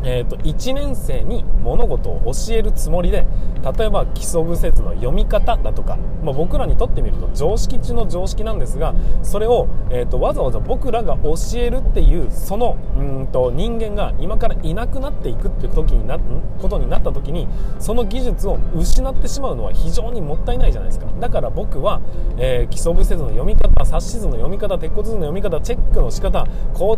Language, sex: Japanese, male